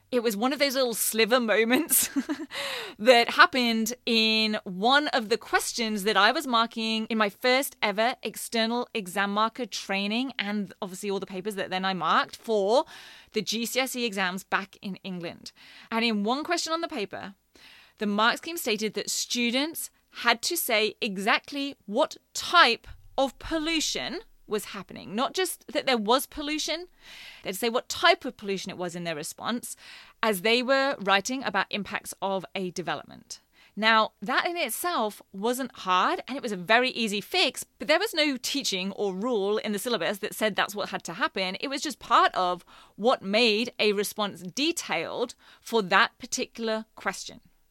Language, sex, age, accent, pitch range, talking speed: English, female, 20-39, British, 205-265 Hz, 170 wpm